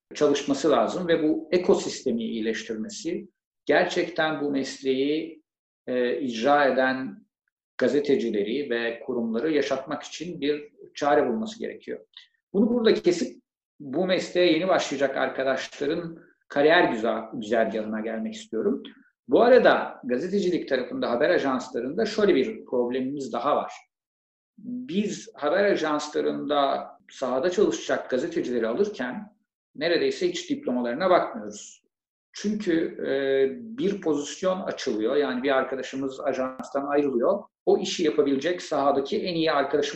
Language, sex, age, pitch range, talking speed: Turkish, male, 50-69, 130-195 Hz, 110 wpm